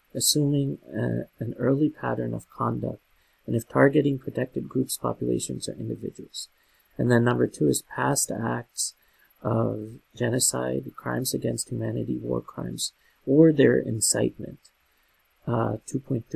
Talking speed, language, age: 120 wpm, English, 40-59